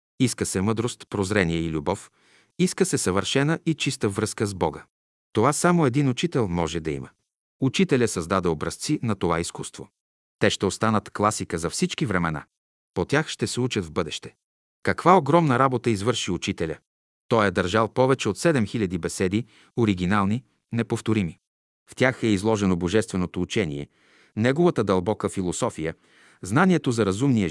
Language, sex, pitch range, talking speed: Bulgarian, male, 90-120 Hz, 145 wpm